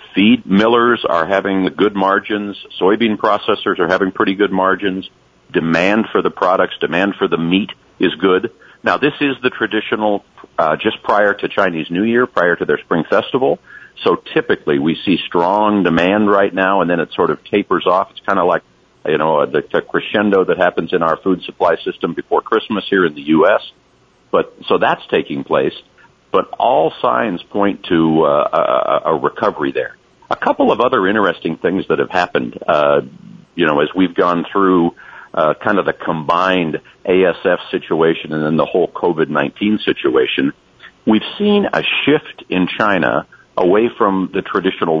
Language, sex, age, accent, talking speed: English, male, 50-69, American, 175 wpm